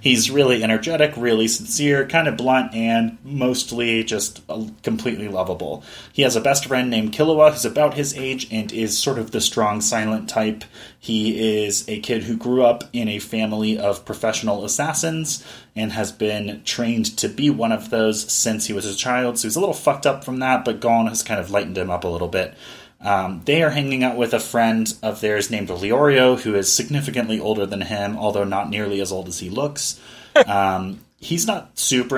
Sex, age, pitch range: male, 30-49, 105-130 Hz